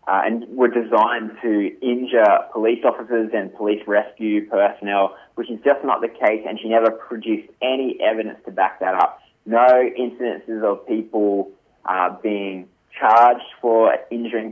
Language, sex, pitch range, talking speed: English, male, 100-120 Hz, 155 wpm